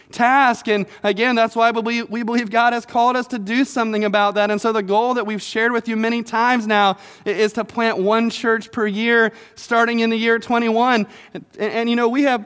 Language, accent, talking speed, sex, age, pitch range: English, American, 220 wpm, male, 20-39, 205-235 Hz